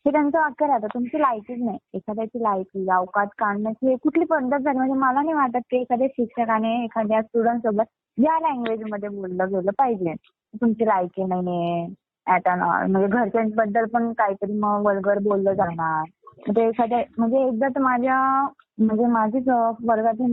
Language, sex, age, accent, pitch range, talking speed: Marathi, female, 20-39, native, 220-285 Hz, 130 wpm